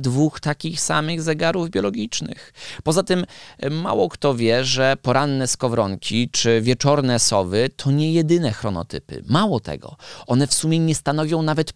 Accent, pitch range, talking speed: native, 110-140 Hz, 145 wpm